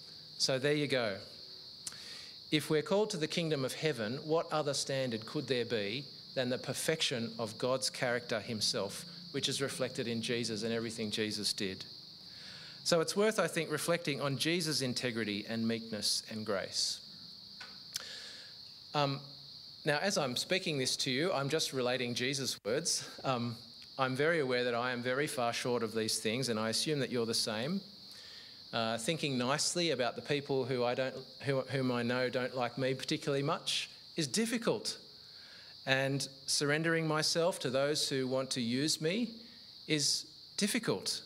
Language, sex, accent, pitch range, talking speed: English, male, Australian, 125-160 Hz, 155 wpm